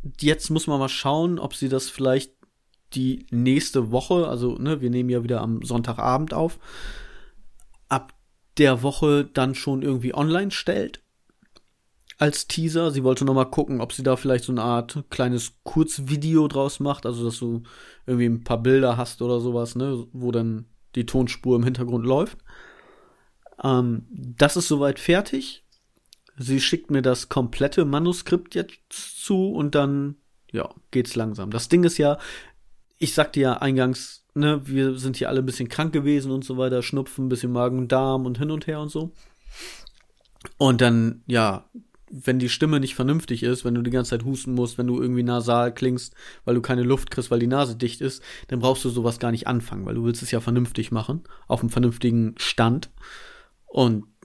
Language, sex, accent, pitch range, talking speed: German, male, German, 120-145 Hz, 180 wpm